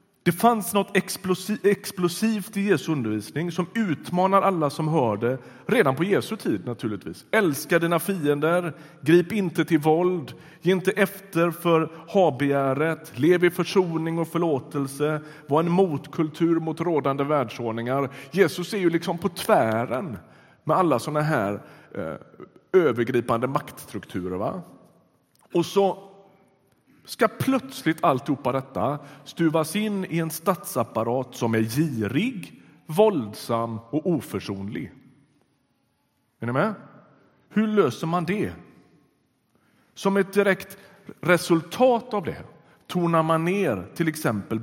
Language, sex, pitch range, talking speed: Swedish, male, 130-190 Hz, 120 wpm